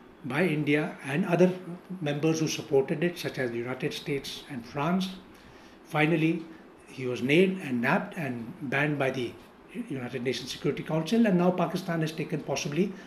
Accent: Indian